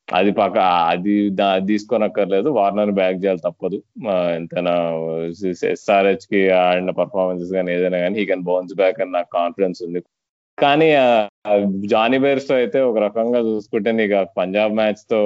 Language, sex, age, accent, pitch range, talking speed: Telugu, male, 20-39, native, 95-110 Hz, 140 wpm